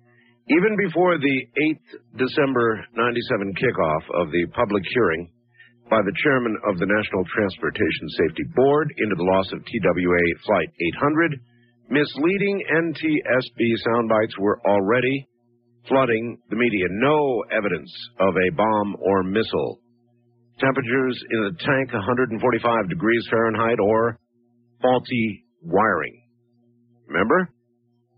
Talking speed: 115 wpm